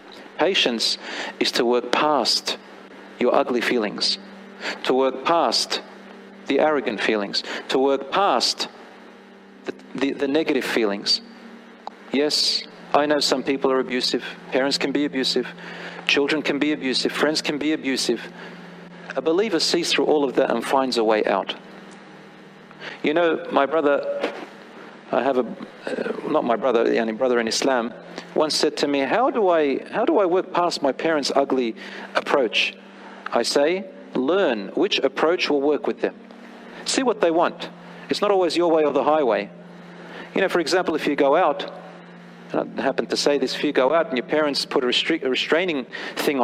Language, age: English, 40-59